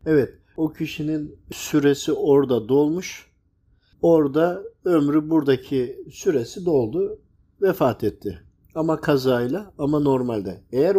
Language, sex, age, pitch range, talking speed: Turkish, male, 50-69, 125-180 Hz, 100 wpm